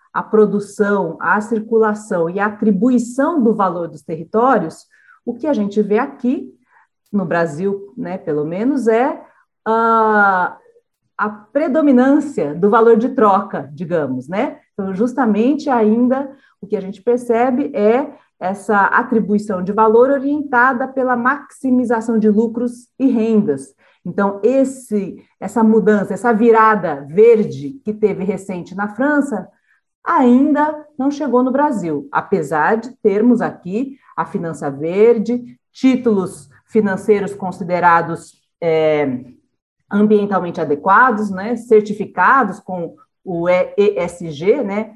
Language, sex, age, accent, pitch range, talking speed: Portuguese, female, 40-59, Brazilian, 190-250 Hz, 115 wpm